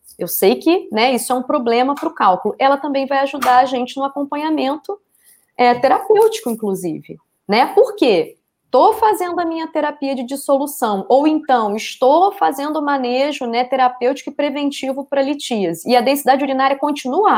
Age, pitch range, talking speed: 20-39, 215-305 Hz, 165 wpm